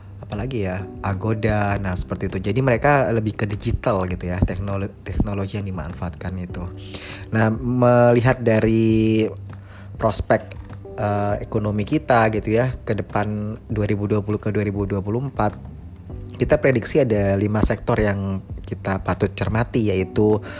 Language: Indonesian